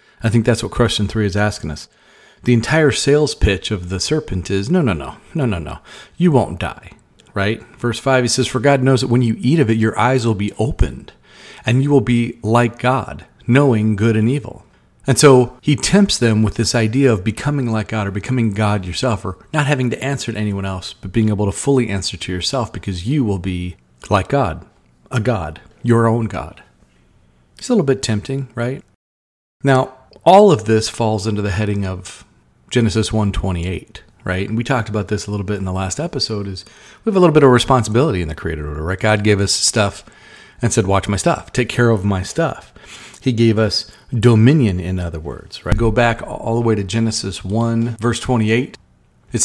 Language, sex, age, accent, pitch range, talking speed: English, male, 40-59, American, 100-125 Hz, 210 wpm